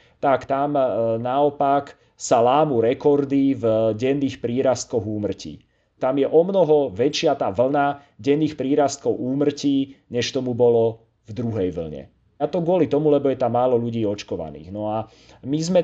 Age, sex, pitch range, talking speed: 30-49, male, 110-140 Hz, 150 wpm